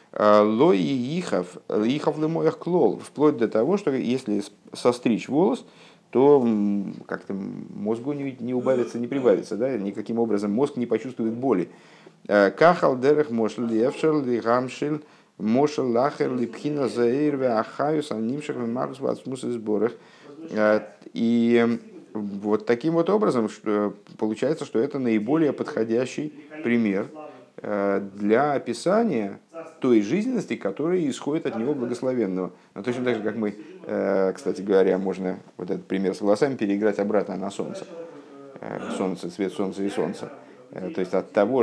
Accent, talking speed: native, 105 wpm